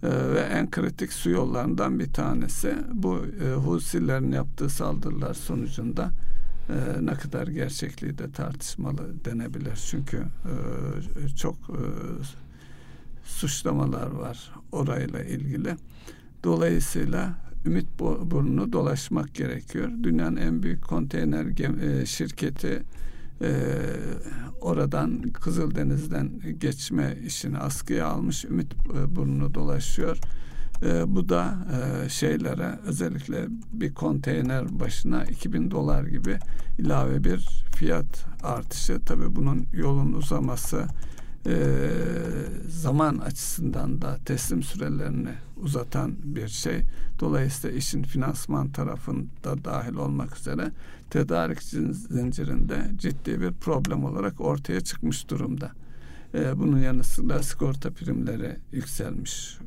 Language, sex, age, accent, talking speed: Turkish, male, 60-79, native, 105 wpm